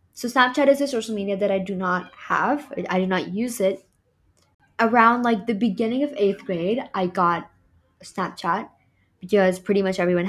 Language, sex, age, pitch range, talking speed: English, female, 10-29, 185-235 Hz, 175 wpm